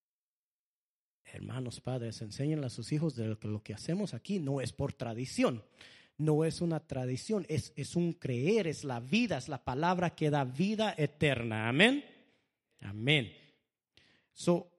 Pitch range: 125-165 Hz